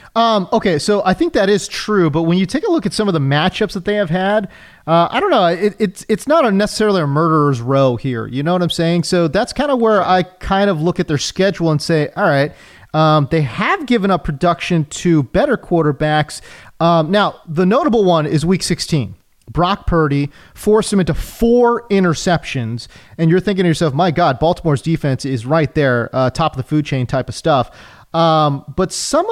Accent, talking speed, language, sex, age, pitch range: American, 215 wpm, English, male, 30-49, 150-200 Hz